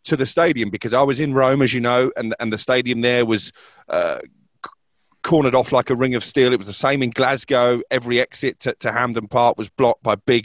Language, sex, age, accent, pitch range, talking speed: English, male, 30-49, British, 130-175 Hz, 235 wpm